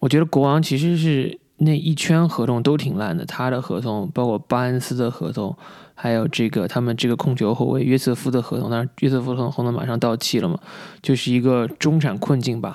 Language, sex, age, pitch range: Chinese, male, 20-39, 120-145 Hz